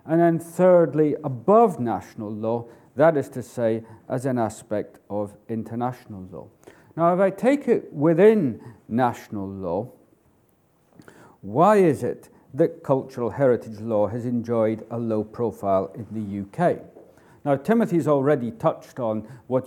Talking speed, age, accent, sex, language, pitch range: 135 wpm, 50-69, British, male, English, 110-155 Hz